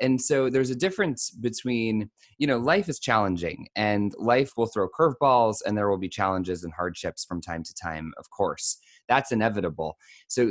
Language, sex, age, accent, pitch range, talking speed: English, male, 20-39, American, 95-130 Hz, 185 wpm